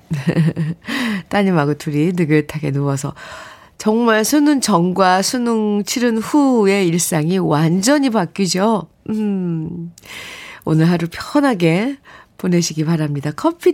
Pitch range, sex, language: 170-260 Hz, female, Korean